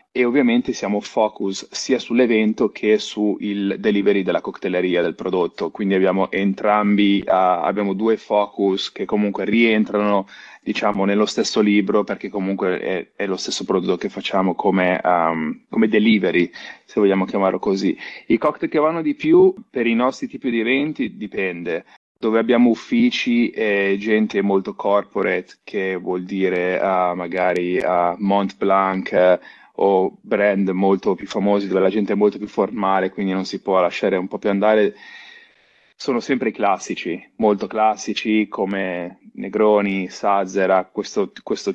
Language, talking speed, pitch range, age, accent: Italian, 150 wpm, 95-110 Hz, 30-49, native